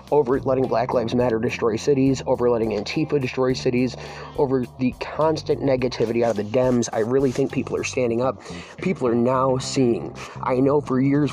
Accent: American